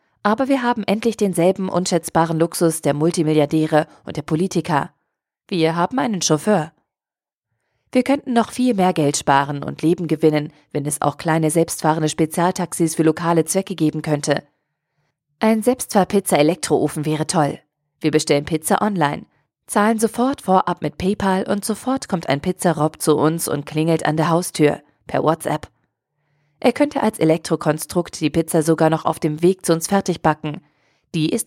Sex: female